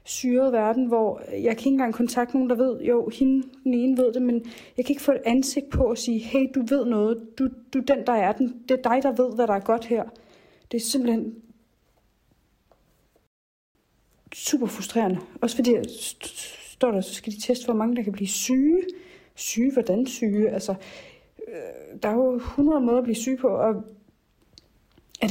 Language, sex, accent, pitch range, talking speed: Danish, female, native, 230-280 Hz, 190 wpm